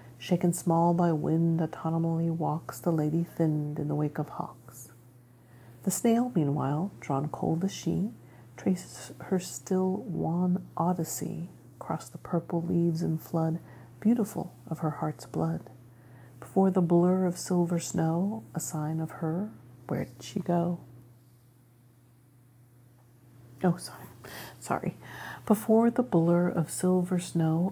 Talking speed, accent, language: 130 wpm, American, English